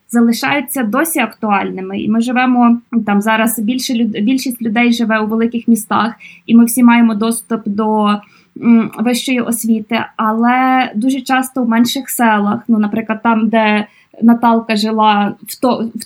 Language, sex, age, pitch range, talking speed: Ukrainian, female, 20-39, 225-265 Hz, 140 wpm